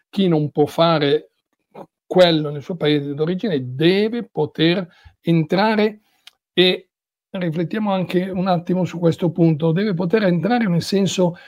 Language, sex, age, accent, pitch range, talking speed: Italian, male, 50-69, native, 155-180 Hz, 130 wpm